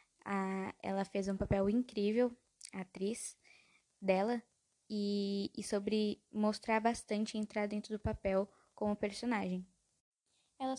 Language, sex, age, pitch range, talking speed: Portuguese, female, 10-29, 205-245 Hz, 110 wpm